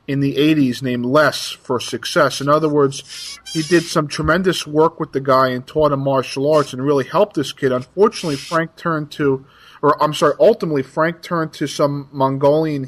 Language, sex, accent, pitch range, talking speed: English, male, American, 135-165 Hz, 190 wpm